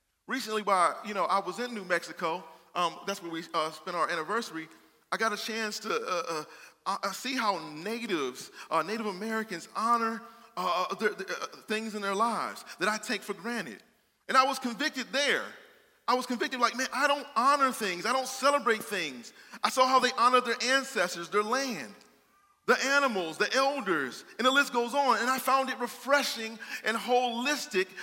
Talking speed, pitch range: 185 wpm, 185-255 Hz